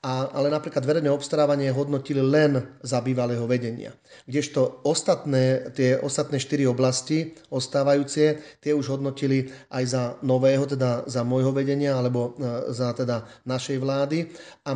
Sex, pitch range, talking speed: male, 130-145 Hz, 140 wpm